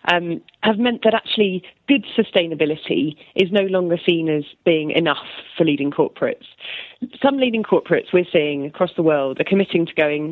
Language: English